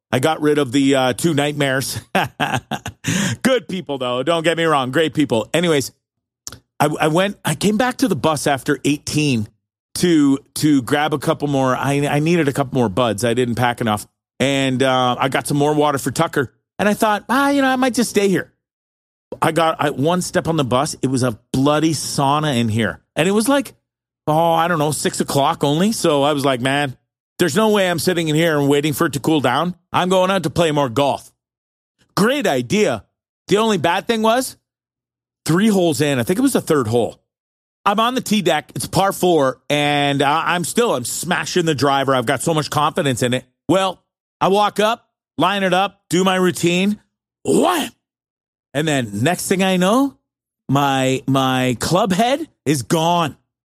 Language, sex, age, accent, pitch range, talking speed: English, male, 40-59, American, 135-185 Hz, 200 wpm